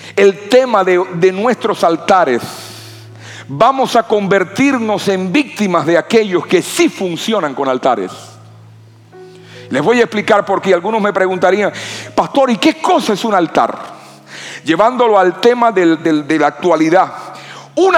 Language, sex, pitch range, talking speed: Spanish, male, 175-250 Hz, 140 wpm